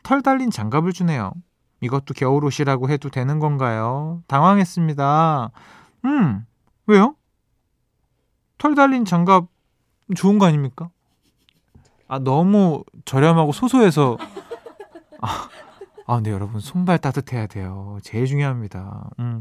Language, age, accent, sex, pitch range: Korean, 20-39, native, male, 125-180 Hz